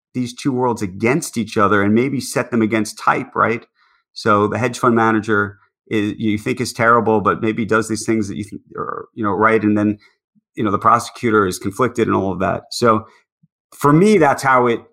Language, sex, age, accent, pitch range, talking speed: English, male, 30-49, American, 105-120 Hz, 215 wpm